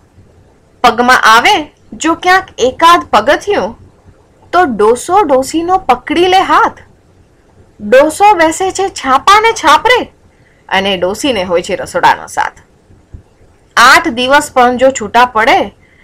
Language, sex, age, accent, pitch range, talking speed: Gujarati, female, 20-39, native, 210-340 Hz, 105 wpm